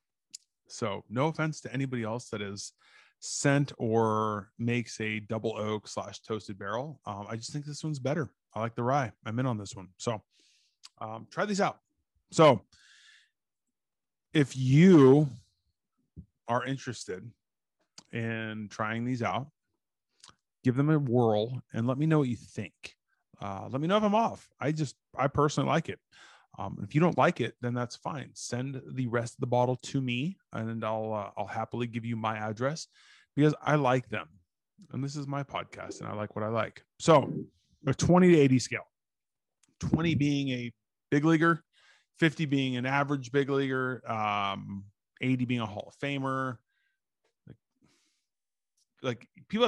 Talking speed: 170 wpm